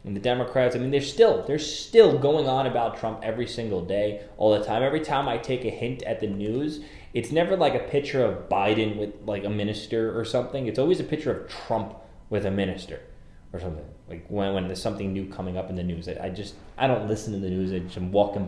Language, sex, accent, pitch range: English, male, American, 100-130 Hz